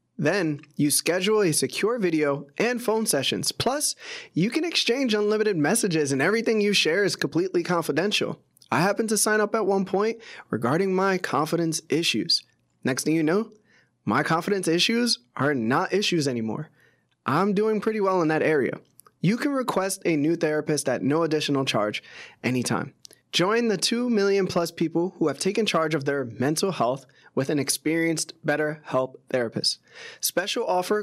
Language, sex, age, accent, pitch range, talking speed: English, male, 20-39, American, 145-195 Hz, 160 wpm